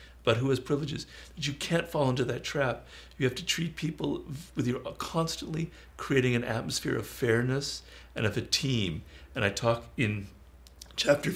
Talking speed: 170 wpm